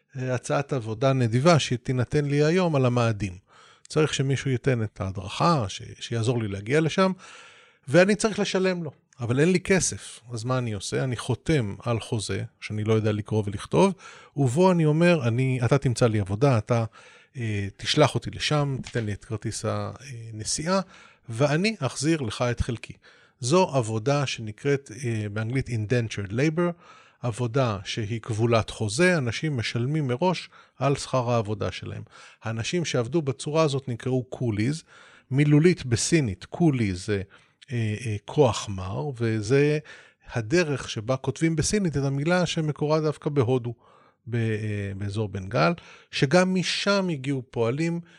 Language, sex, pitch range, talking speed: Hebrew, male, 115-155 Hz, 140 wpm